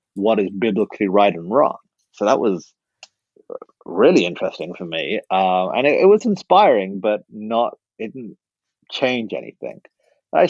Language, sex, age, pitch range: English, male, 30-49, 100-135 Hz